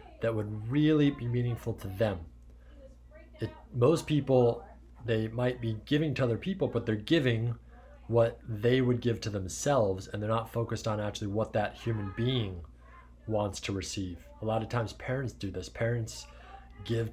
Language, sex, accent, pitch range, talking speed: English, male, American, 105-125 Hz, 170 wpm